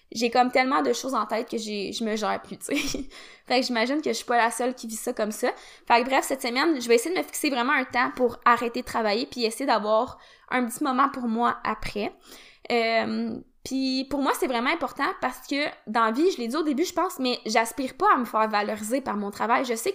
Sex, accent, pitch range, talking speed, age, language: female, Canadian, 230-285 Hz, 260 wpm, 20-39, French